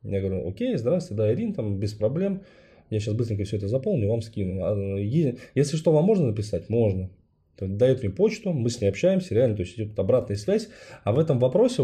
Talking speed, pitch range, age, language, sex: 205 wpm, 100-130 Hz, 20-39, Russian, male